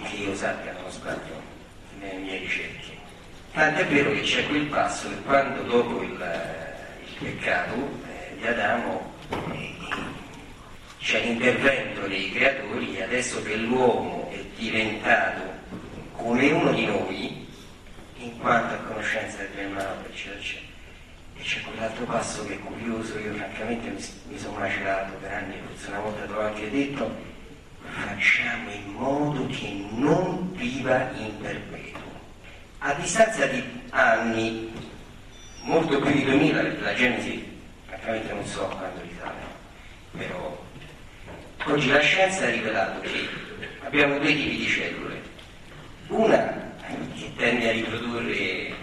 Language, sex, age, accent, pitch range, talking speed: Italian, male, 40-59, native, 100-130 Hz, 130 wpm